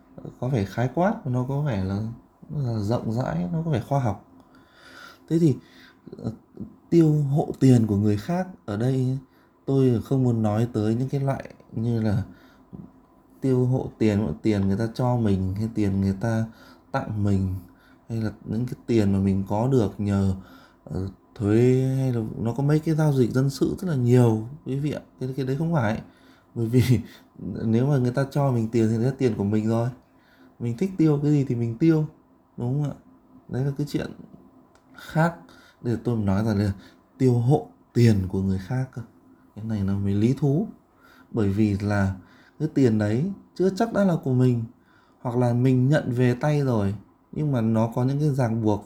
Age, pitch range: 20-39, 105-140 Hz